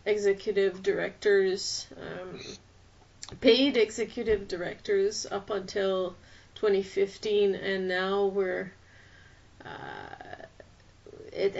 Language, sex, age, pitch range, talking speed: English, female, 30-49, 180-220 Hz, 70 wpm